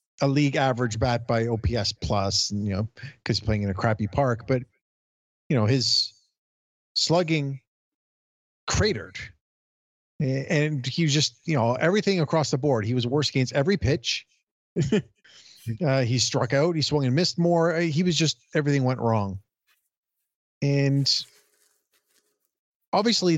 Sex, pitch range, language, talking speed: male, 115-155 Hz, English, 140 wpm